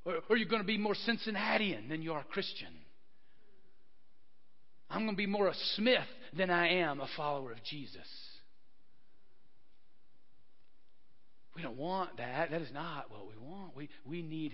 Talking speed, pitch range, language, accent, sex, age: 160 wpm, 150-210 Hz, English, American, male, 50-69